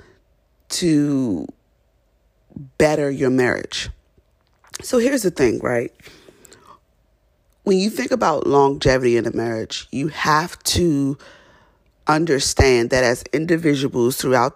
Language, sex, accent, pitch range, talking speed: English, female, American, 130-155 Hz, 105 wpm